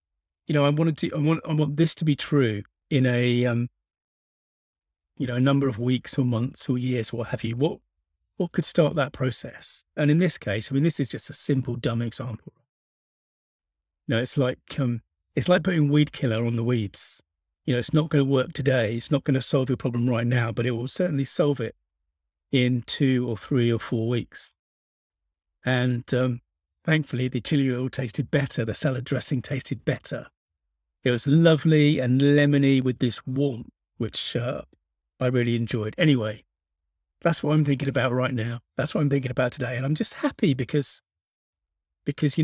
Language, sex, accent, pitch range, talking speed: English, male, British, 110-145 Hz, 195 wpm